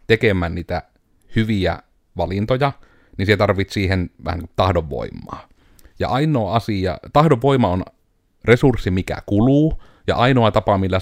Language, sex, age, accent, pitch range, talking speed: Finnish, male, 30-49, native, 90-115 Hz, 120 wpm